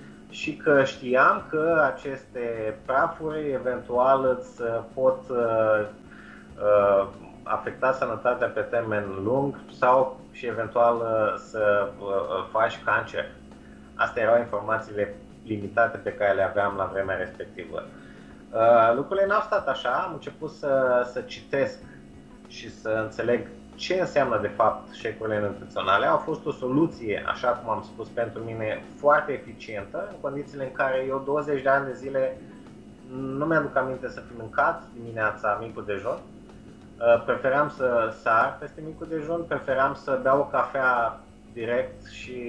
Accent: native